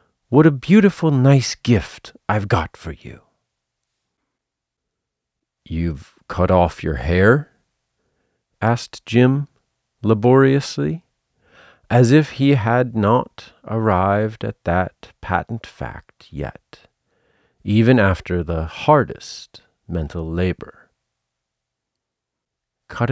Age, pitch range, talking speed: 40-59, 85-135 Hz, 90 wpm